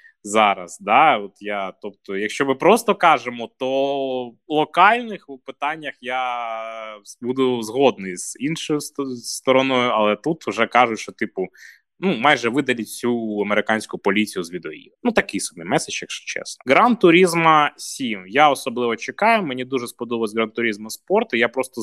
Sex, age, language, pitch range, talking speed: male, 20-39, Ukrainian, 115-150 Hz, 140 wpm